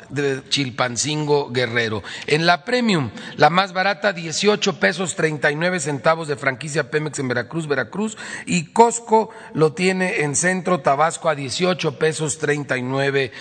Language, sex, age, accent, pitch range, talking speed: Spanish, male, 40-59, Mexican, 135-175 Hz, 135 wpm